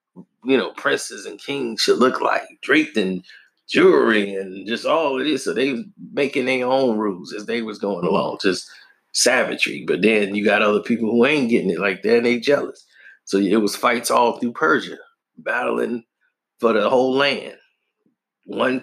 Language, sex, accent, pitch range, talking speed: English, male, American, 110-130 Hz, 185 wpm